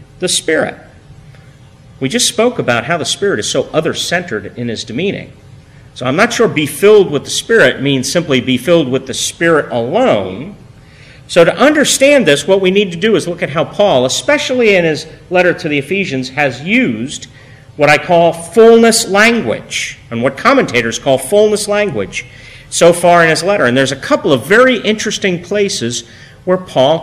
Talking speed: 180 wpm